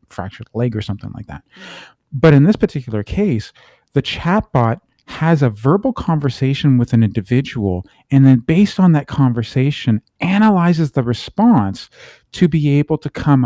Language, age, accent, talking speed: English, 40-59, American, 150 wpm